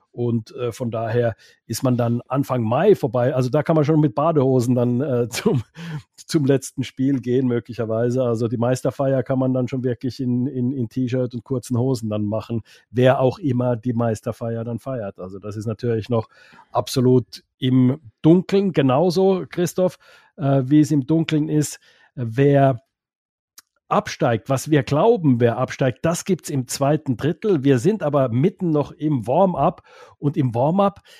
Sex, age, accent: male, 50-69, German